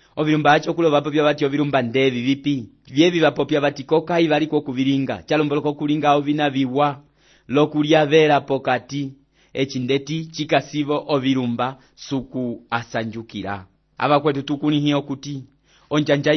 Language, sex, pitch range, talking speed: English, male, 135-150 Hz, 110 wpm